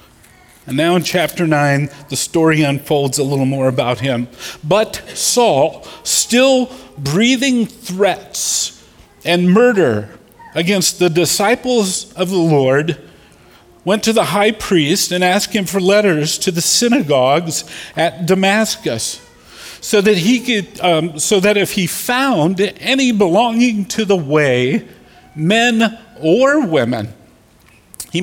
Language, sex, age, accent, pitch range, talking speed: English, male, 50-69, American, 140-205 Hz, 130 wpm